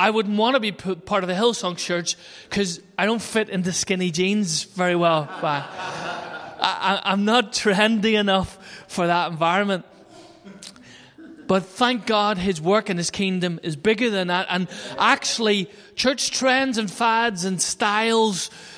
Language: English